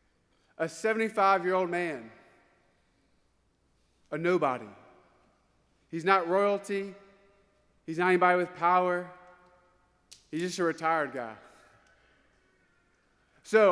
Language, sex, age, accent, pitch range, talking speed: English, male, 20-39, American, 155-205 Hz, 85 wpm